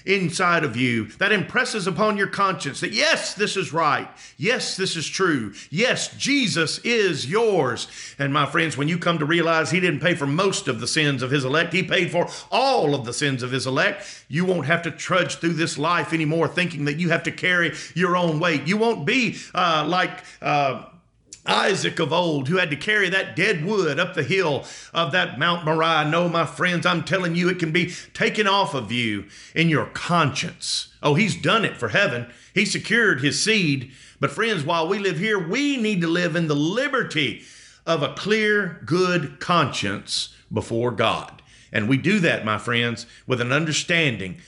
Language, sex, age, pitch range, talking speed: English, male, 50-69, 140-180 Hz, 195 wpm